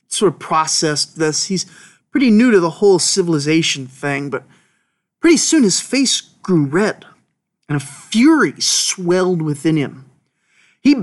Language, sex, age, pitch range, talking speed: English, male, 30-49, 160-220 Hz, 140 wpm